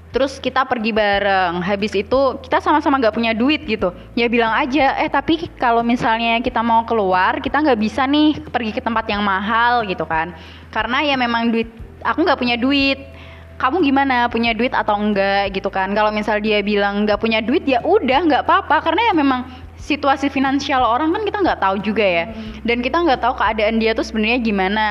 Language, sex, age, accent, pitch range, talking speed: Indonesian, female, 20-39, native, 210-275 Hz, 195 wpm